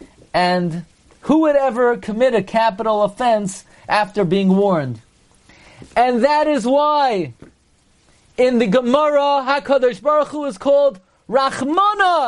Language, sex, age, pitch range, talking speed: English, male, 40-59, 135-190 Hz, 115 wpm